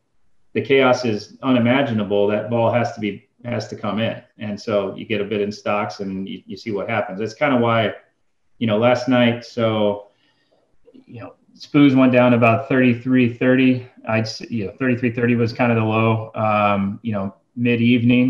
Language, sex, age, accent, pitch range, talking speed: English, male, 30-49, American, 105-120 Hz, 200 wpm